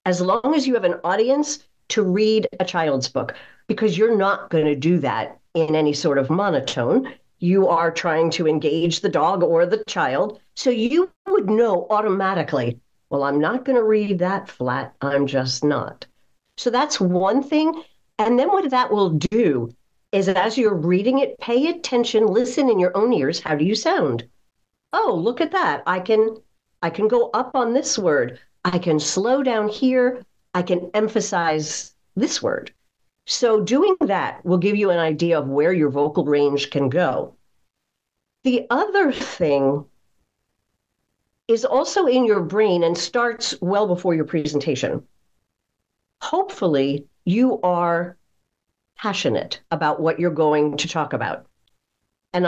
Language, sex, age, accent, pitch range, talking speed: English, female, 50-69, American, 160-250 Hz, 160 wpm